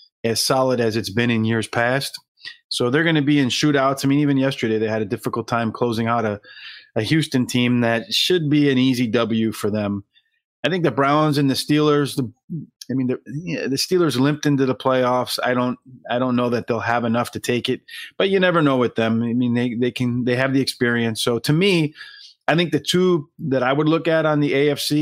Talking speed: 235 wpm